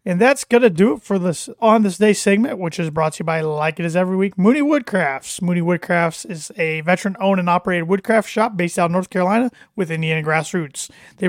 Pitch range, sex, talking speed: 170-215 Hz, male, 230 wpm